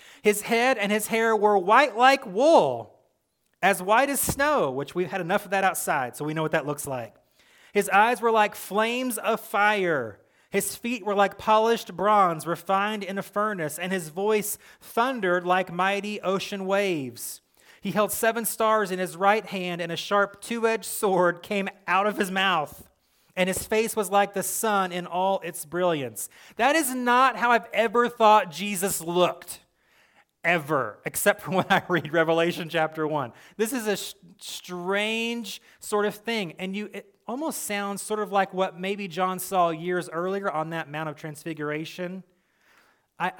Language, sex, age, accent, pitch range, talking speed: English, male, 30-49, American, 170-215 Hz, 175 wpm